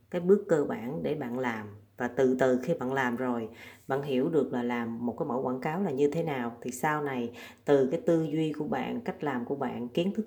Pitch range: 125-170 Hz